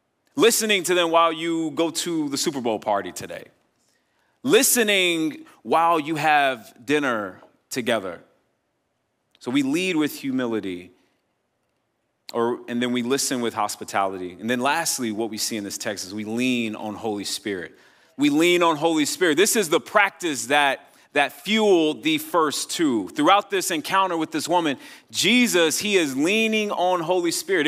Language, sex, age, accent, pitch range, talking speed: English, male, 30-49, American, 140-210 Hz, 160 wpm